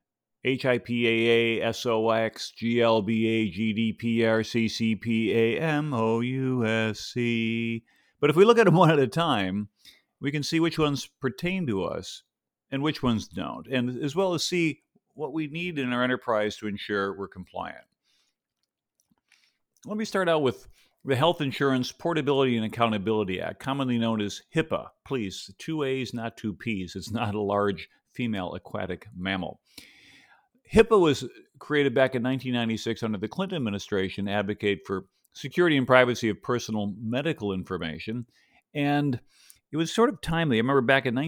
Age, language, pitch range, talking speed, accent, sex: 50-69, English, 105-140 Hz, 140 wpm, American, male